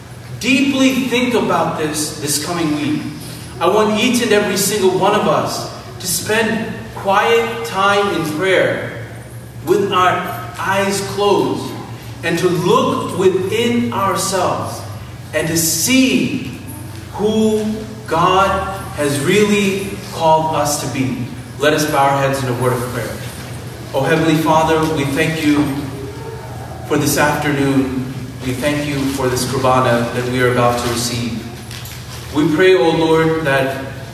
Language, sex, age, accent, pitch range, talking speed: English, male, 40-59, American, 125-170 Hz, 135 wpm